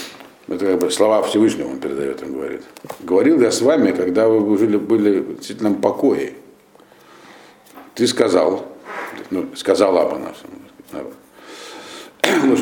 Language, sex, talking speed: Russian, male, 125 wpm